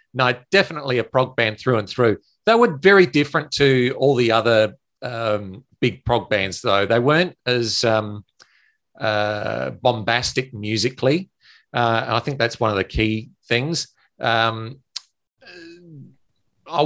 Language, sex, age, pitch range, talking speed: English, male, 40-59, 110-135 Hz, 140 wpm